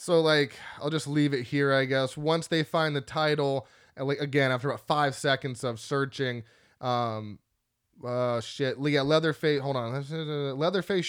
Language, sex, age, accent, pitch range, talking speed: English, male, 20-39, American, 135-165 Hz, 170 wpm